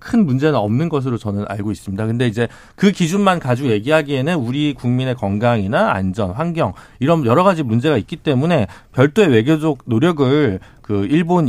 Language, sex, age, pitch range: Korean, male, 40-59, 115-160 Hz